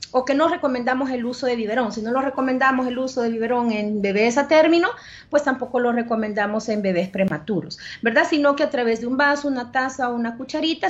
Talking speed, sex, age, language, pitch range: 220 wpm, female, 30-49, Spanish, 230-295 Hz